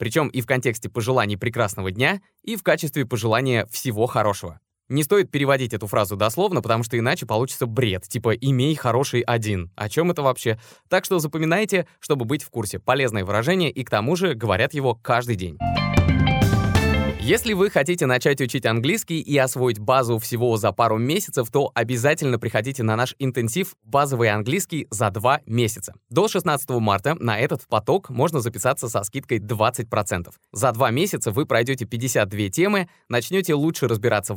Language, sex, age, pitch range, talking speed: Russian, male, 20-39, 110-150 Hz, 165 wpm